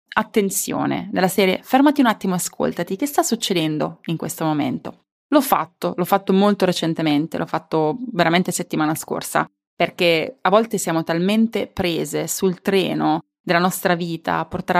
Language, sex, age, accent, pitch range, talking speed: Italian, female, 20-39, native, 175-230 Hz, 150 wpm